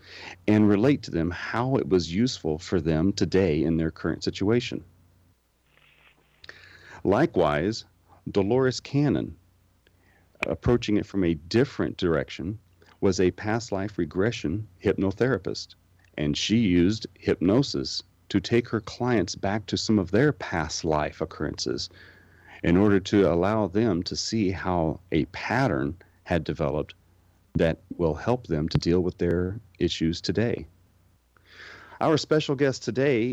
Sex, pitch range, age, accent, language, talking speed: male, 85-110 Hz, 40-59, American, English, 130 wpm